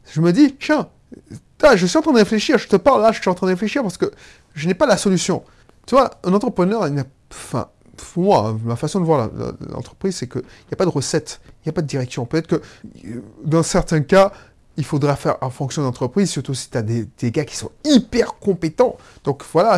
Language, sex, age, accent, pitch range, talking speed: French, male, 30-49, French, 135-195 Hz, 245 wpm